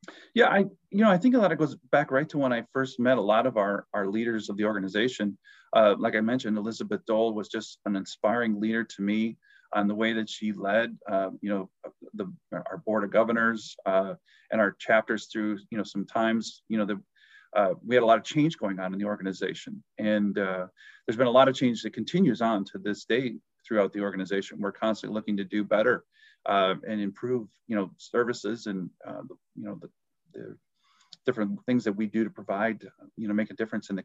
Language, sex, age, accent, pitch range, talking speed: English, male, 40-59, American, 105-125 Hz, 220 wpm